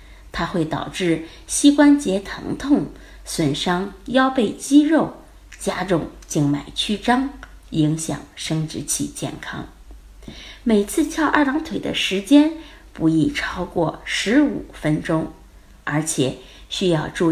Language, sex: Chinese, female